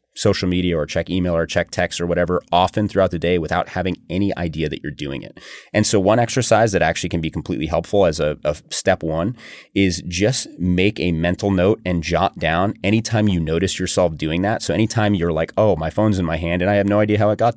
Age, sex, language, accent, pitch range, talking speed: 30-49, male, English, American, 85-100 Hz, 240 wpm